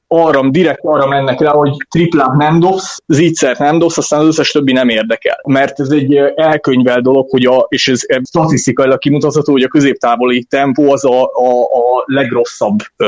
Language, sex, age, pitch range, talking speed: Hungarian, male, 20-39, 125-145 Hz, 175 wpm